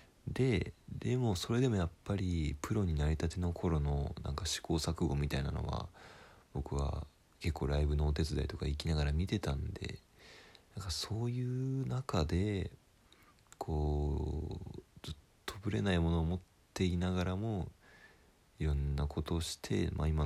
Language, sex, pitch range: Japanese, male, 75-95 Hz